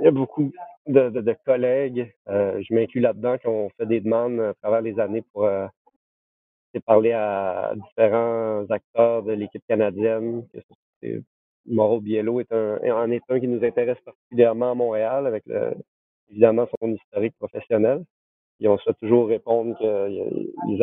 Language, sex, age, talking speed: French, male, 40-59, 160 wpm